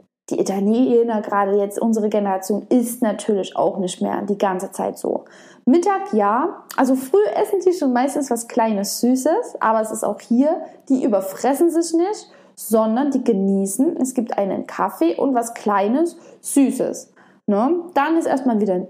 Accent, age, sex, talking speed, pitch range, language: German, 20-39, female, 160 wpm, 220-290 Hz, German